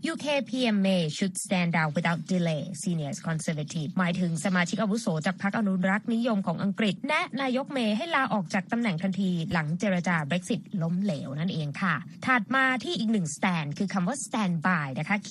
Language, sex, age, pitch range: Thai, female, 20-39, 175-220 Hz